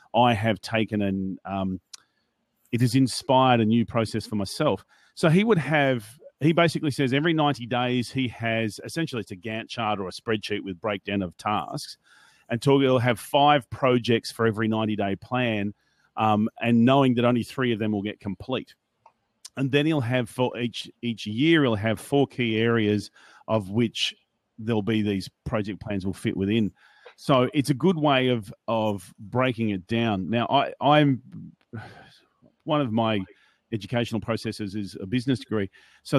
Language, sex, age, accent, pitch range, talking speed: English, male, 40-59, Australian, 105-130 Hz, 175 wpm